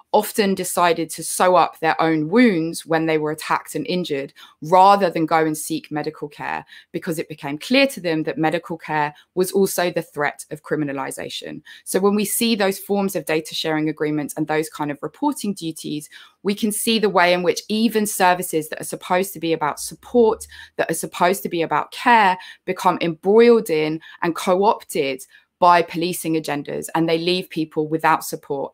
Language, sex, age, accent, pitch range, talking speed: English, female, 20-39, British, 155-190 Hz, 185 wpm